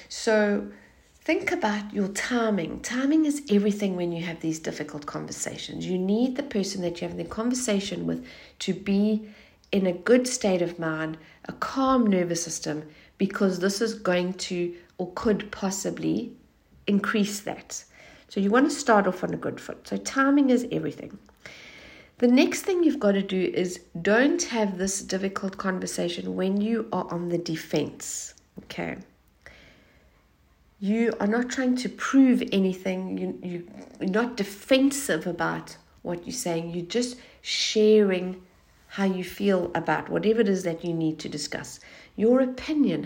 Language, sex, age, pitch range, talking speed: English, female, 60-79, 175-225 Hz, 155 wpm